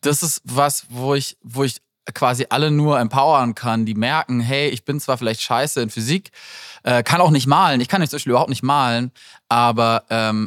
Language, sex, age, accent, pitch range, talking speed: German, male, 20-39, German, 115-150 Hz, 205 wpm